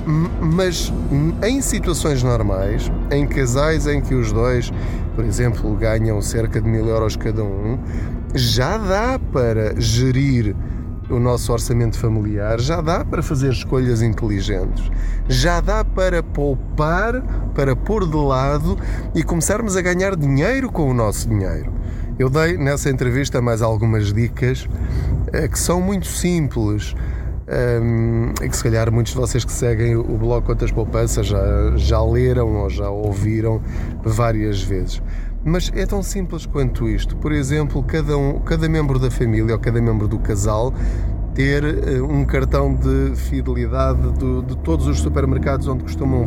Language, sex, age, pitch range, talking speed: Portuguese, male, 20-39, 95-135 Hz, 150 wpm